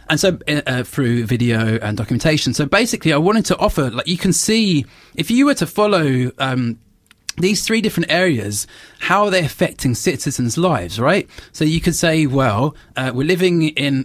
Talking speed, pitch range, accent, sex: 185 wpm, 120-160 Hz, British, male